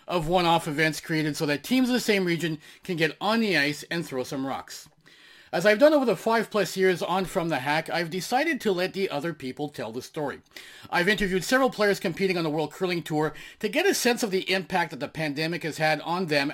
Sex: male